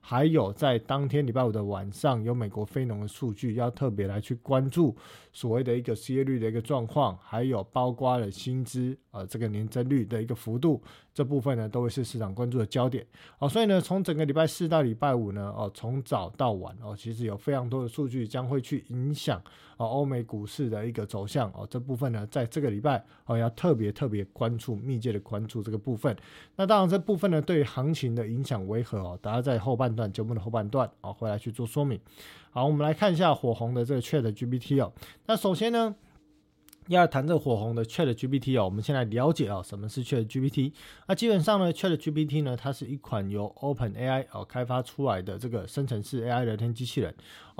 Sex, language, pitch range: male, Chinese, 115-140 Hz